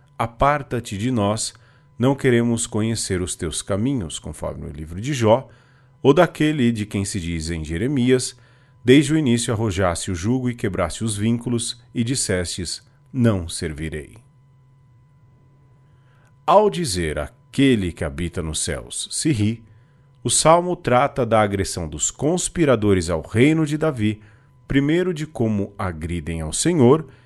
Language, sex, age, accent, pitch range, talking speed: Portuguese, male, 40-59, Brazilian, 100-135 Hz, 135 wpm